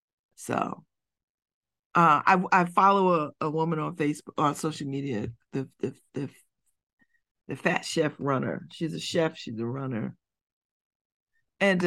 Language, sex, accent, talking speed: English, female, American, 135 wpm